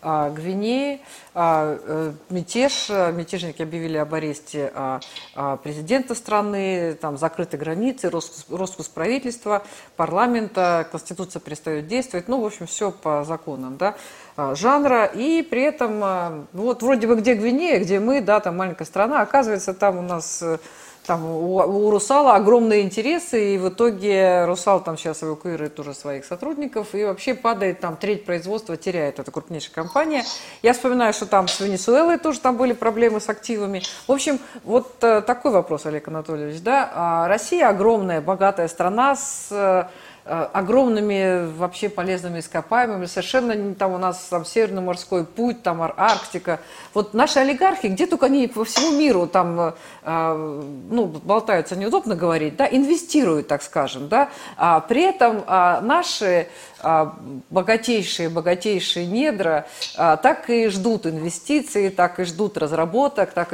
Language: Russian